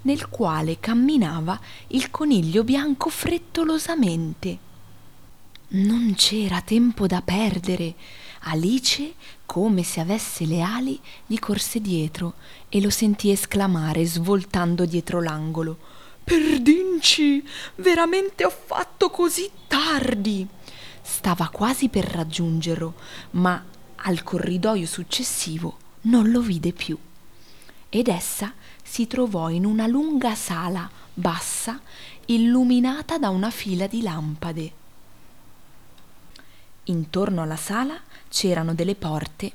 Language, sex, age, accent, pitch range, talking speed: Italian, female, 20-39, native, 170-250 Hz, 100 wpm